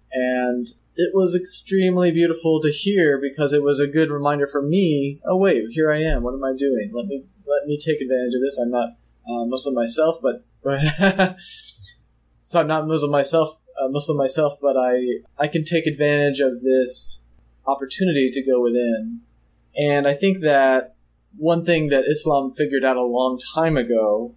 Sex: male